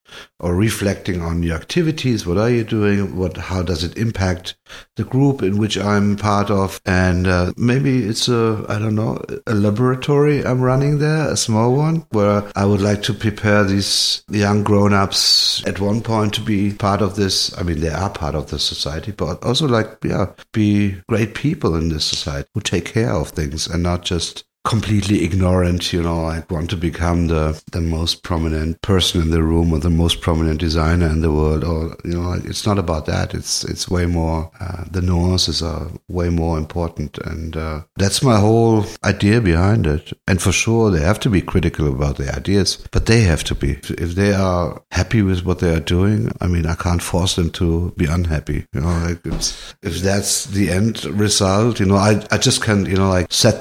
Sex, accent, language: male, German, English